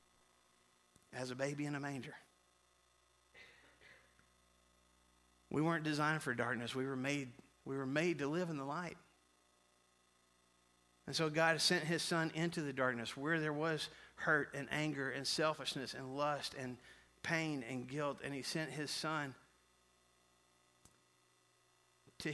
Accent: American